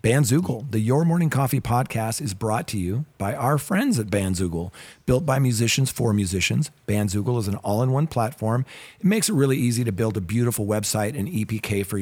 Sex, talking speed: male, 190 wpm